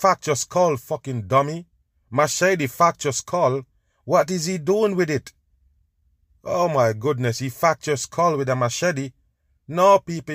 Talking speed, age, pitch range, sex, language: 155 wpm, 30-49, 115-165 Hz, male, English